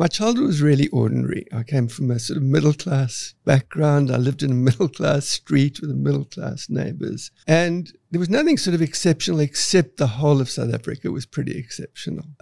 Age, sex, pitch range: 60-79, male, 125-160 Hz